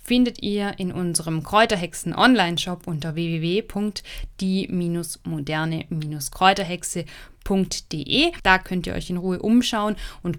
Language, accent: German, German